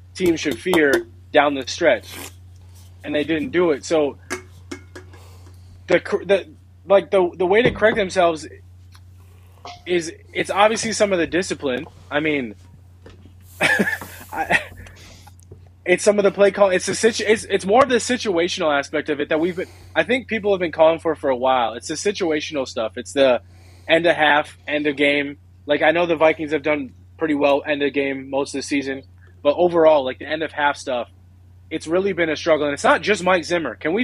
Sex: male